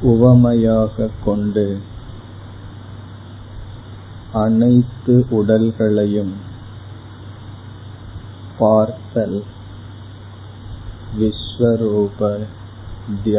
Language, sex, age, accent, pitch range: Tamil, male, 50-69, native, 100-110 Hz